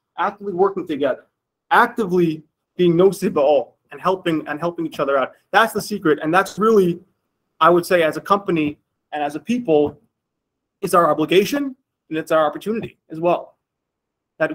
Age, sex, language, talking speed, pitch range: 20-39, male, English, 165 wpm, 150-185 Hz